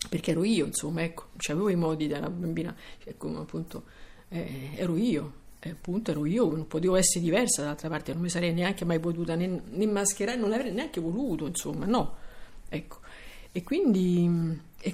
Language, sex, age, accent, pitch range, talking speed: Italian, female, 50-69, native, 165-210 Hz, 180 wpm